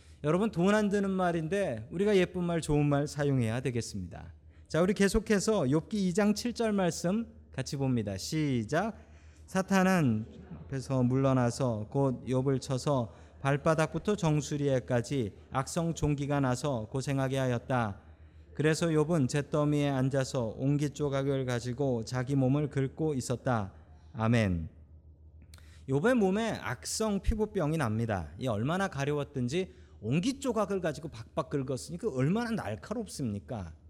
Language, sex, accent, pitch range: Korean, male, native, 110-180 Hz